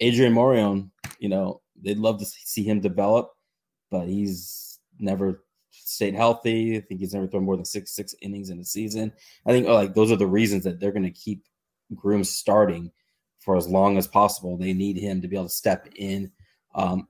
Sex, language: male, English